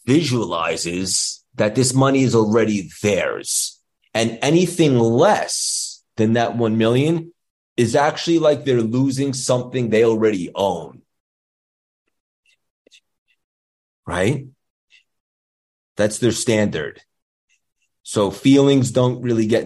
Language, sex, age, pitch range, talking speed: English, male, 30-49, 95-125 Hz, 100 wpm